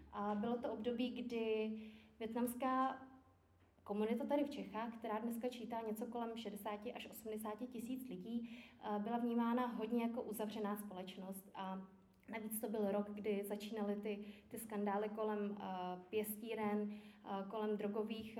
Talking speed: 135 wpm